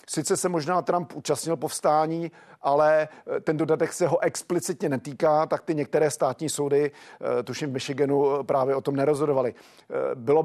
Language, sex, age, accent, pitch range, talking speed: Czech, male, 40-59, native, 140-160 Hz, 150 wpm